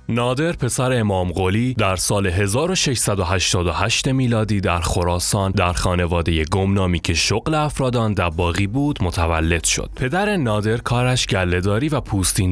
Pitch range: 90-125 Hz